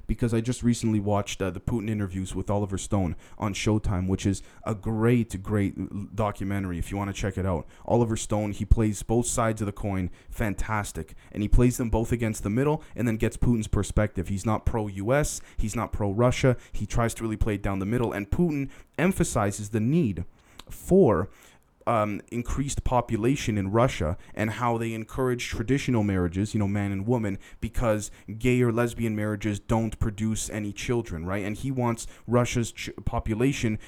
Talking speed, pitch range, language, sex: 180 wpm, 100-120 Hz, English, male